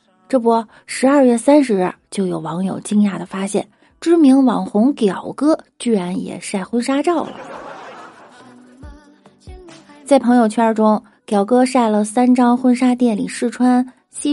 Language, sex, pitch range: Chinese, female, 190-255 Hz